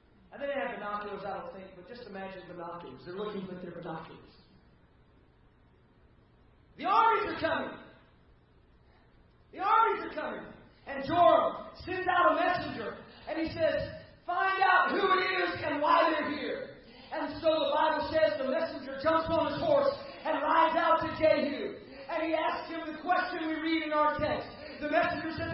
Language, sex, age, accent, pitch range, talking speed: English, male, 40-59, American, 230-335 Hz, 165 wpm